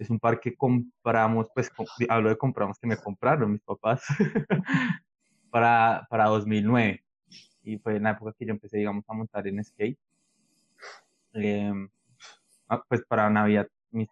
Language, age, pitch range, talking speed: Spanish, 20-39, 105-120 Hz, 155 wpm